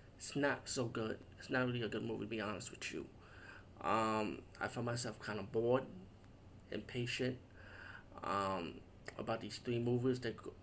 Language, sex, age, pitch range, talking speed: English, male, 20-39, 105-130 Hz, 165 wpm